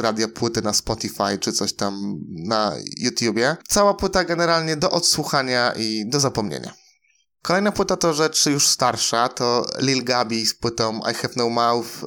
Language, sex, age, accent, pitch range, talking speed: Polish, male, 20-39, native, 115-155 Hz, 160 wpm